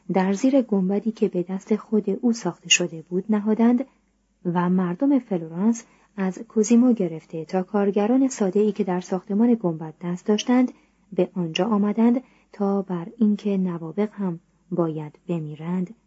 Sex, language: female, Persian